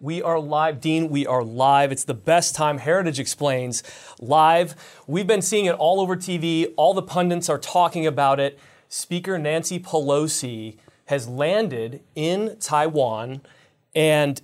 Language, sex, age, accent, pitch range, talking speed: English, male, 30-49, American, 140-170 Hz, 150 wpm